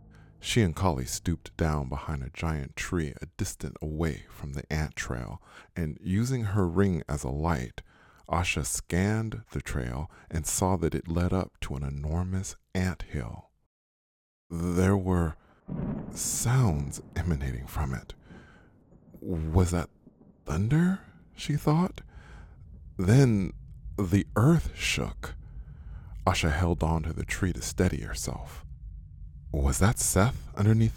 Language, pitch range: English, 75-95 Hz